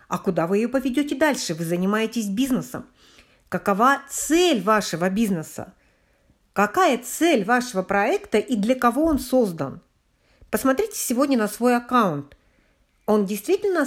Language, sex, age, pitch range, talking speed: Russian, female, 50-69, 190-260 Hz, 125 wpm